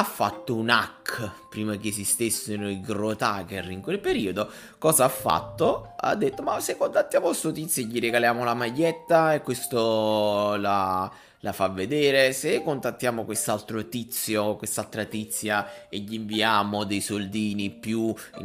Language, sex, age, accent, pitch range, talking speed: Italian, male, 20-39, native, 95-125 Hz, 145 wpm